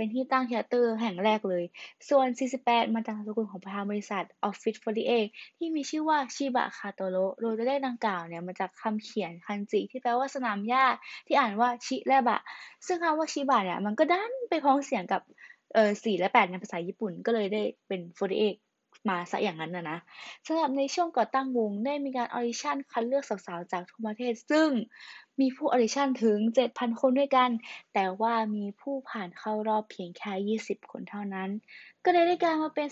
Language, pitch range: Thai, 215-280 Hz